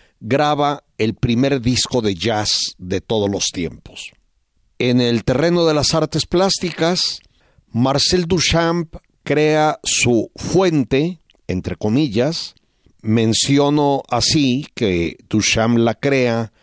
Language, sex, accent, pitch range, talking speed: Spanish, male, Mexican, 110-150 Hz, 110 wpm